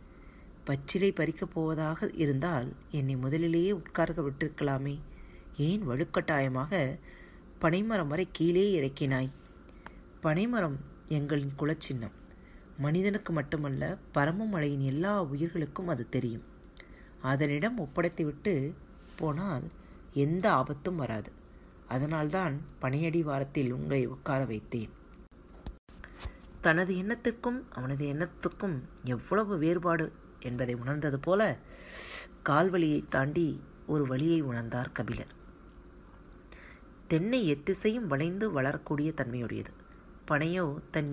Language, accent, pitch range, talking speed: Tamil, native, 135-175 Hz, 85 wpm